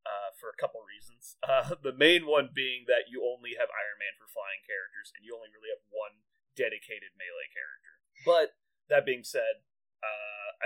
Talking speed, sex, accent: 185 wpm, male, American